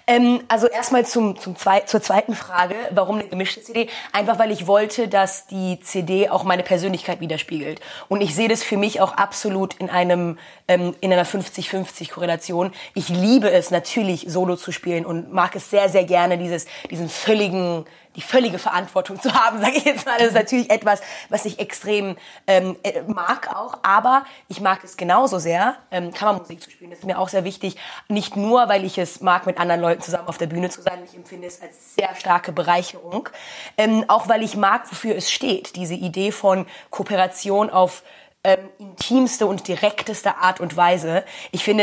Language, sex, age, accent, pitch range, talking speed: German, female, 20-39, German, 180-210 Hz, 190 wpm